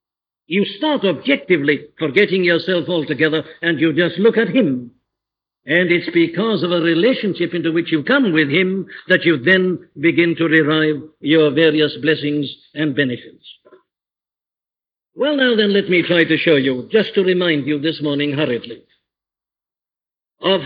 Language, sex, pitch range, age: English, male, 155-195 Hz, 60-79